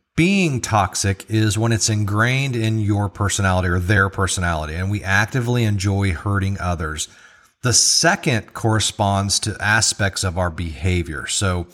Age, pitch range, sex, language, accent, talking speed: 40-59, 95-115 Hz, male, English, American, 140 wpm